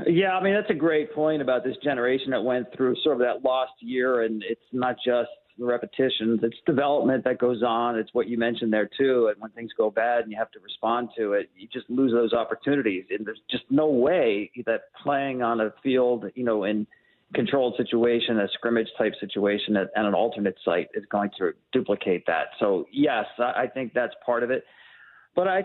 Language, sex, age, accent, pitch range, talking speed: English, male, 40-59, American, 115-140 Hz, 215 wpm